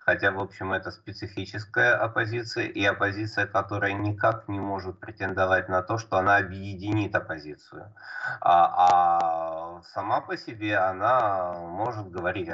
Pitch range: 100-115 Hz